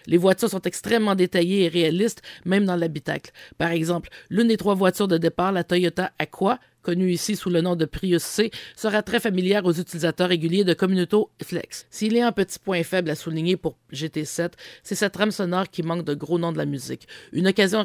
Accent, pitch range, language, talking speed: Canadian, 170-200 Hz, English, 210 wpm